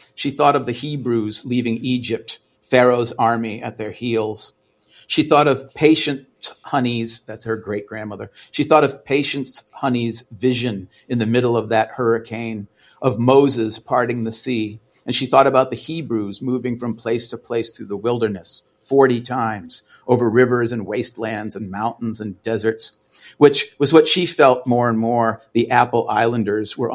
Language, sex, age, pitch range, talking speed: English, male, 50-69, 110-125 Hz, 165 wpm